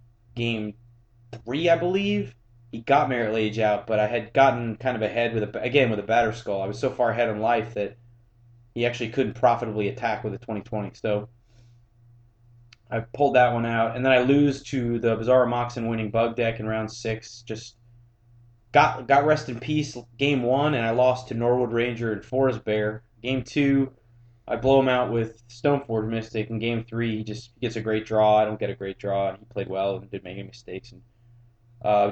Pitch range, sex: 110-120 Hz, male